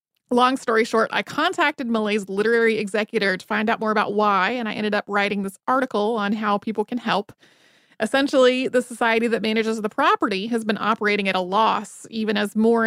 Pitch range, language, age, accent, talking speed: 200-235 Hz, English, 30-49, American, 195 wpm